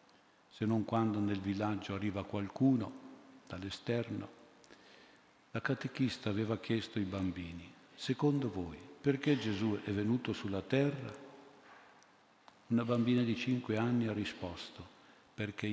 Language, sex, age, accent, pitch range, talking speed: Italian, male, 50-69, native, 95-115 Hz, 115 wpm